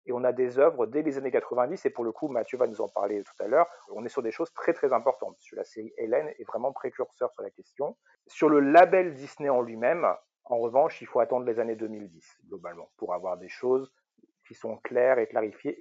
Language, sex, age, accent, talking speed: French, male, 40-59, French, 240 wpm